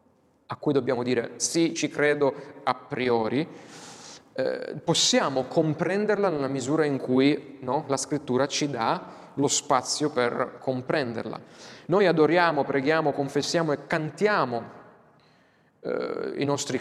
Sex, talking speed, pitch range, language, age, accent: male, 120 wpm, 130-165 Hz, Italian, 30-49, native